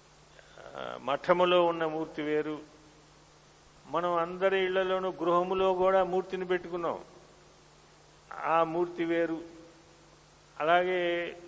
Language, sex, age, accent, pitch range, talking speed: Telugu, male, 50-69, native, 155-180 Hz, 80 wpm